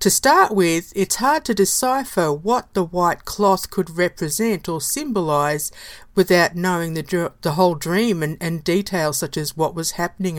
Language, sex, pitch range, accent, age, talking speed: English, female, 160-205 Hz, Australian, 50-69, 165 wpm